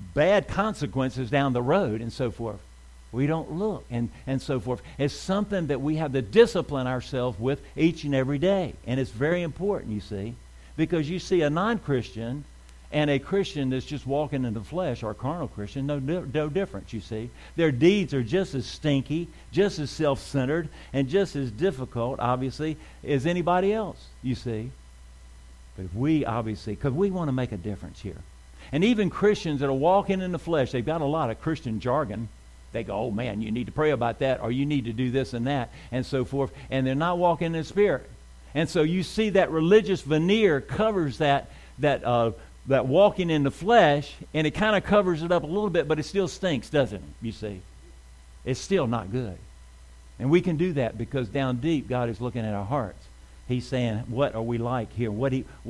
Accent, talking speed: American, 210 wpm